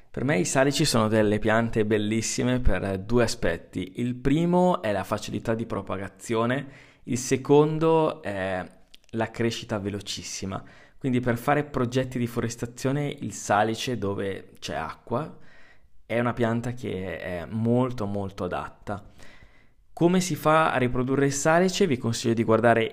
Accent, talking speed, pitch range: native, 140 wpm, 100-130 Hz